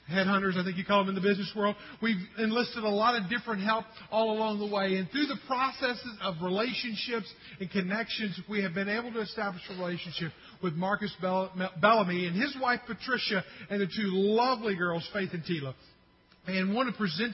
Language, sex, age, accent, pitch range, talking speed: English, male, 40-59, American, 175-215 Hz, 200 wpm